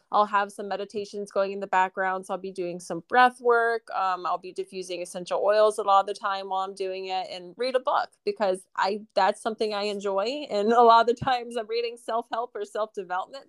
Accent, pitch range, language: American, 185-225 Hz, English